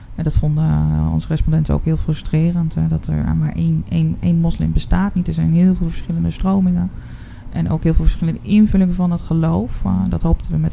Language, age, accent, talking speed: Dutch, 20-39, Dutch, 200 wpm